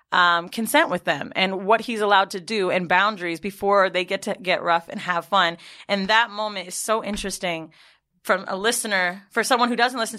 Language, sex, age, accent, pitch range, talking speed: English, female, 30-49, American, 185-240 Hz, 205 wpm